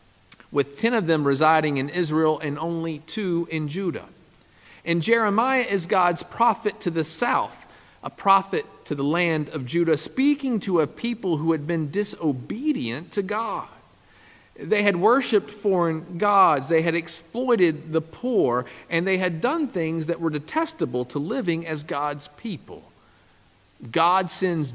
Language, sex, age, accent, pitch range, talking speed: English, male, 50-69, American, 135-190 Hz, 150 wpm